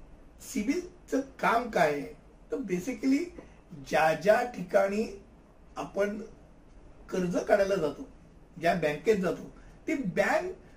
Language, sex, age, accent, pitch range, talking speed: Hindi, male, 60-79, native, 190-235 Hz, 70 wpm